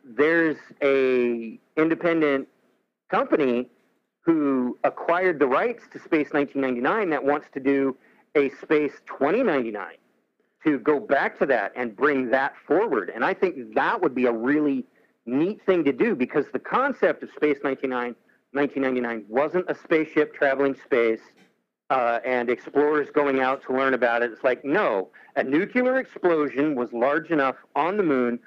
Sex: male